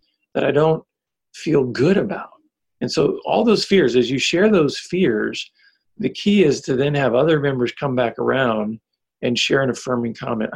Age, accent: 50-69, American